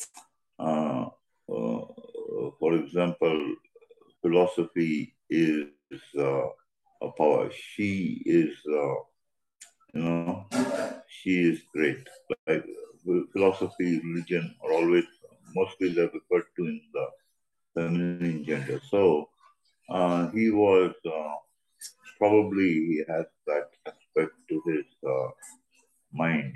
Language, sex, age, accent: English, male, 50-69, Indian